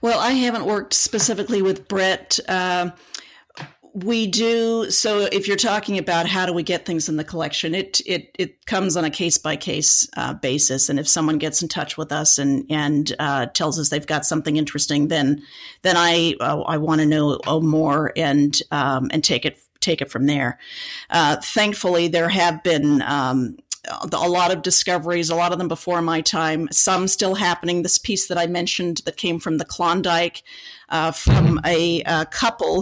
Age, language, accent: 50-69, English, American